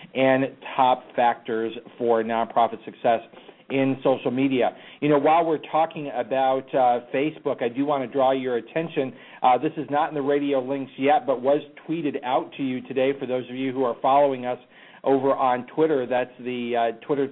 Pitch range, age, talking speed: 125-145 Hz, 40-59, 190 wpm